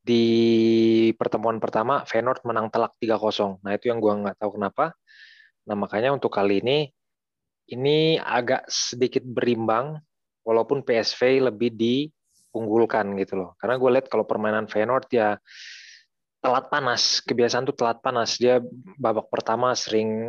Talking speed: 135 wpm